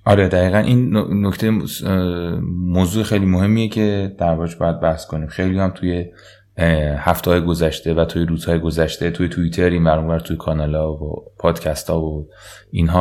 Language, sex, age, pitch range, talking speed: Persian, male, 30-49, 85-105 Hz, 150 wpm